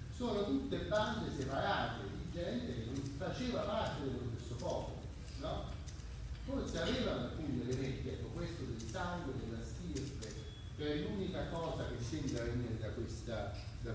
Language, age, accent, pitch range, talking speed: Italian, 40-59, native, 110-150 Hz, 140 wpm